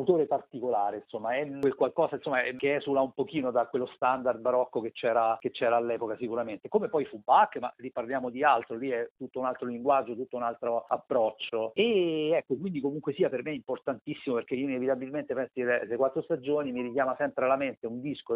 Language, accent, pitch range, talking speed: Italian, native, 120-140 Hz, 205 wpm